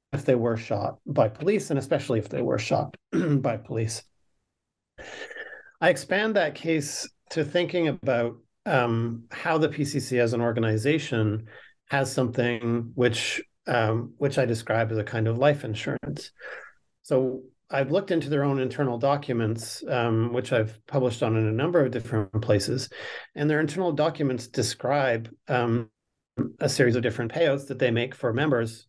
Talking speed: 160 wpm